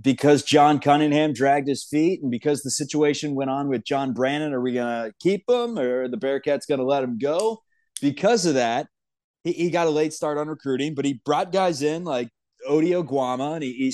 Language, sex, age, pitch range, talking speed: English, male, 20-39, 135-165 Hz, 225 wpm